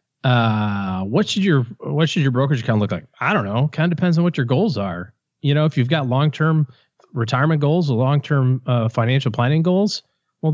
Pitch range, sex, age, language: 115-140 Hz, male, 40-59, English